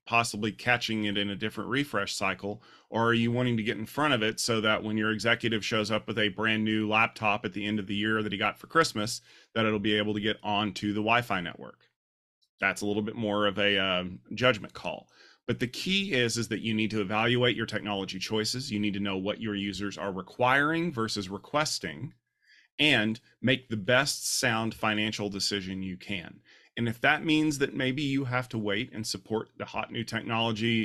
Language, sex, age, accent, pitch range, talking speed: English, male, 30-49, American, 105-120 Hz, 215 wpm